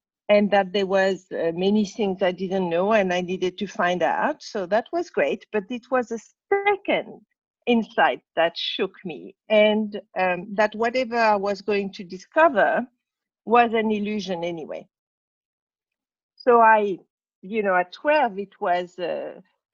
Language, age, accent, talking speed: English, 50-69, French, 155 wpm